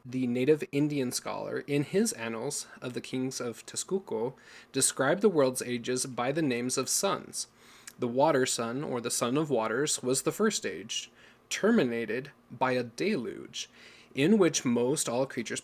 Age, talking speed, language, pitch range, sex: 20-39, 160 wpm, English, 120-140 Hz, male